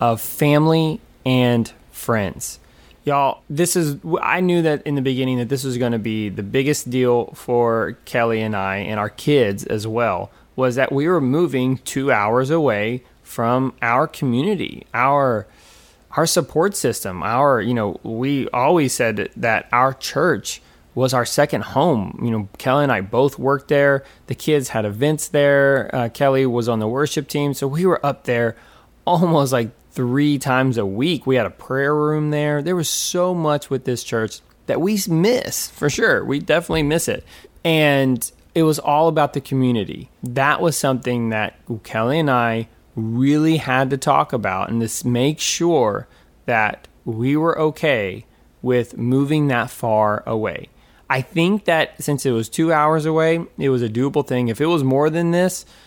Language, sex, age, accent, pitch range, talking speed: English, male, 20-39, American, 120-150 Hz, 175 wpm